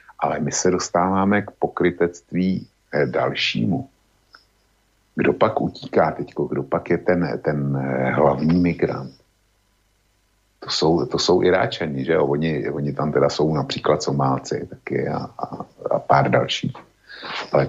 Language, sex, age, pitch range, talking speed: Slovak, male, 50-69, 75-100 Hz, 130 wpm